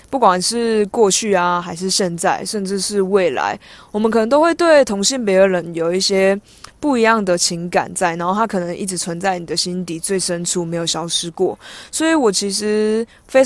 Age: 20-39